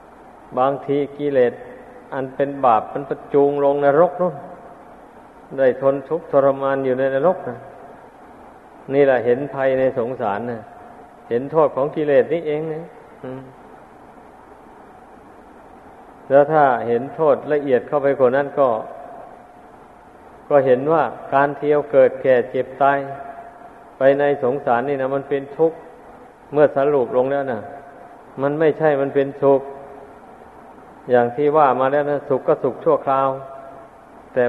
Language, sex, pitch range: Thai, male, 135-150 Hz